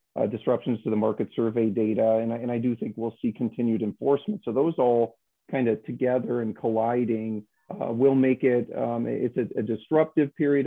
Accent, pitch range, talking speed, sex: American, 115-125 Hz, 195 wpm, male